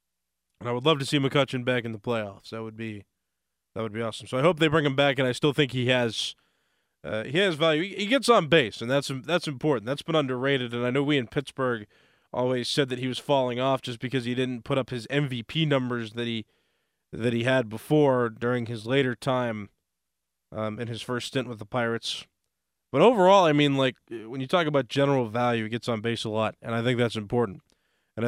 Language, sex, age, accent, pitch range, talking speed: English, male, 20-39, American, 115-140 Hz, 235 wpm